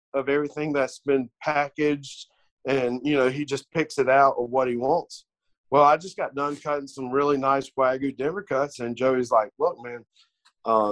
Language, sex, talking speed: English, male, 190 wpm